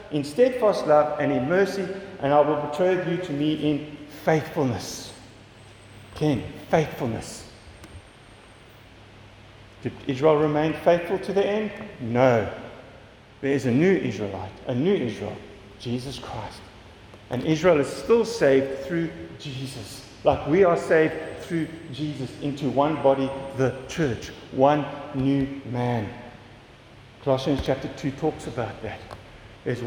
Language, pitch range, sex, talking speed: English, 120-170 Hz, male, 125 wpm